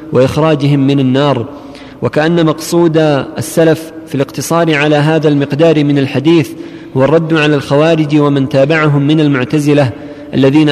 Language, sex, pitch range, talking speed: Arabic, male, 140-155 Hz, 125 wpm